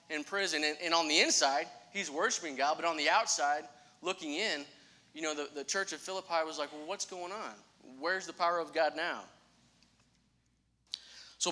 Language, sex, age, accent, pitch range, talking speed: English, male, 30-49, American, 145-185 Hz, 180 wpm